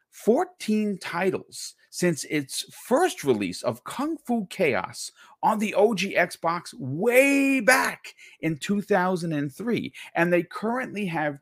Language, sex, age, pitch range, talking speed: English, male, 40-59, 125-200 Hz, 115 wpm